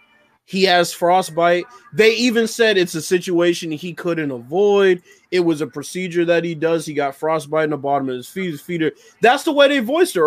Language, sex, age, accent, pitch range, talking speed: English, male, 20-39, American, 175-250 Hz, 205 wpm